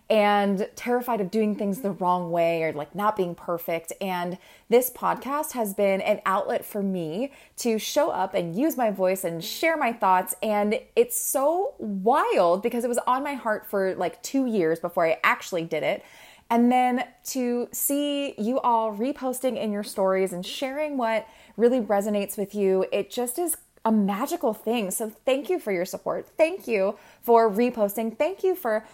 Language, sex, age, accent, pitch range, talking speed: English, female, 20-39, American, 190-255 Hz, 180 wpm